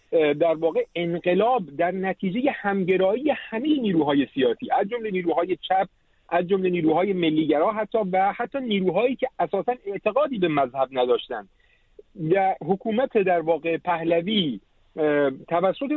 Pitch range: 165-230 Hz